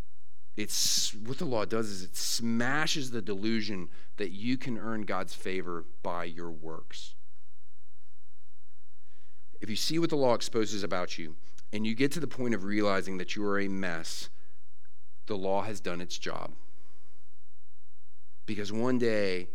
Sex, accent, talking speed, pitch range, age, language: male, American, 155 wpm, 95-110 Hz, 40-59, English